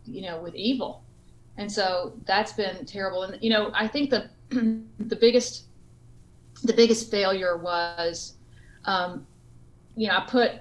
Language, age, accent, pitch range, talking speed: English, 40-59, American, 190-235 Hz, 145 wpm